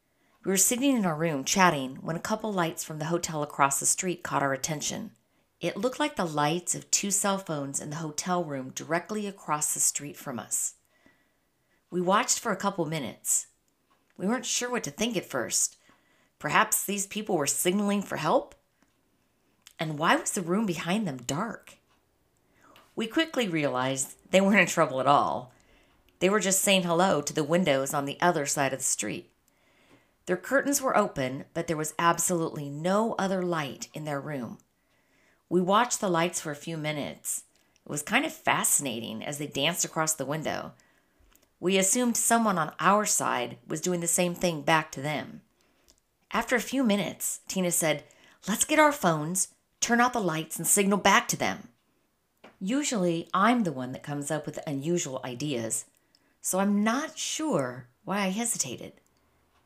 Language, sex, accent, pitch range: English, female, American, 150-200 Hz